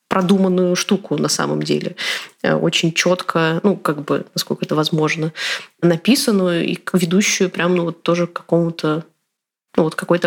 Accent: native